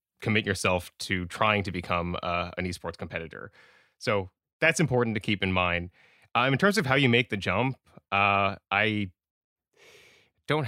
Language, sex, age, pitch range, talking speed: English, male, 20-39, 95-125 Hz, 165 wpm